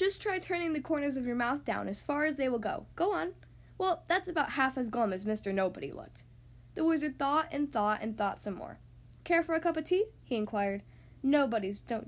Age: 10-29